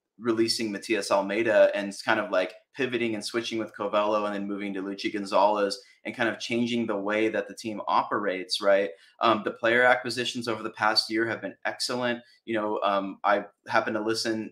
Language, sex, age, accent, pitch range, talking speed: English, male, 20-39, American, 100-115 Hz, 200 wpm